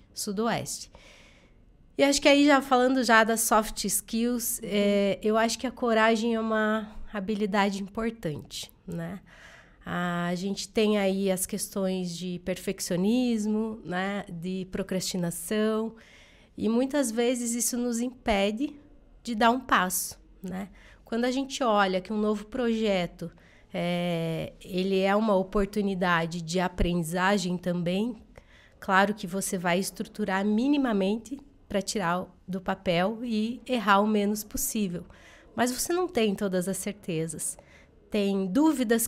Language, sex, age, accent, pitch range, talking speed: Portuguese, female, 20-39, Brazilian, 190-230 Hz, 125 wpm